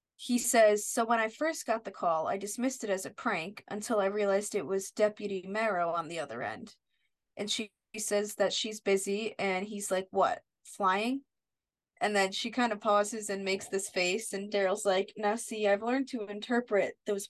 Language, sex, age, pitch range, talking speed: English, female, 20-39, 200-235 Hz, 200 wpm